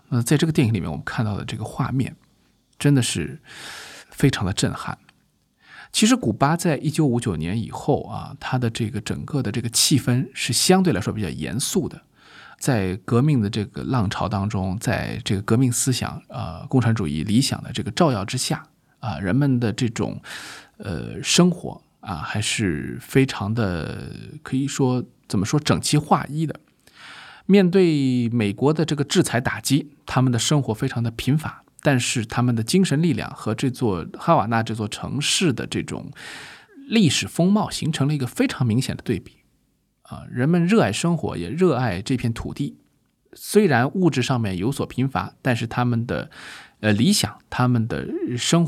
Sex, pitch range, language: male, 110-150 Hz, Chinese